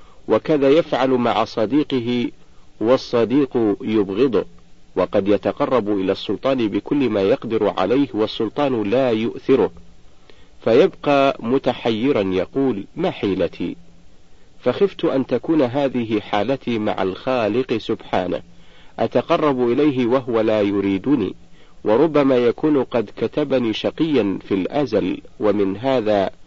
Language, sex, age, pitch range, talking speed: Arabic, male, 50-69, 100-135 Hz, 100 wpm